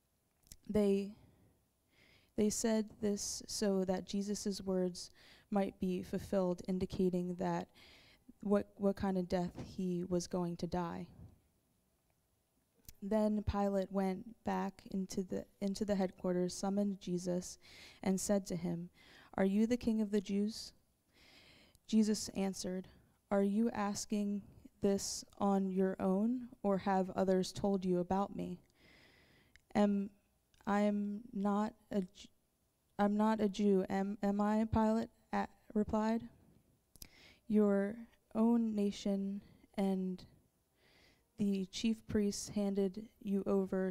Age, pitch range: 20-39, 190-210 Hz